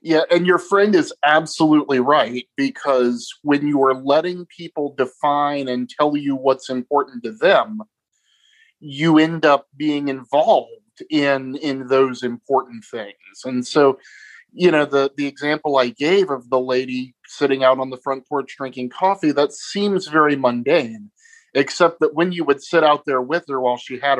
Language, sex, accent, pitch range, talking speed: English, male, American, 135-185 Hz, 170 wpm